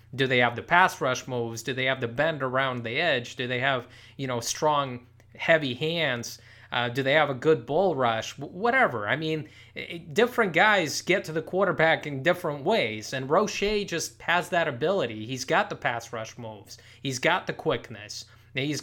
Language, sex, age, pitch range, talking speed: English, male, 20-39, 120-165 Hz, 200 wpm